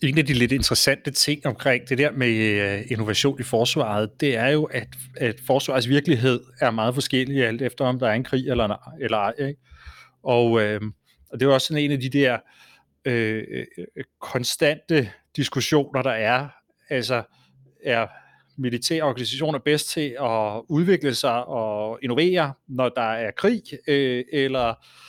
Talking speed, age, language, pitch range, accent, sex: 150 wpm, 30-49, Danish, 120-145 Hz, native, male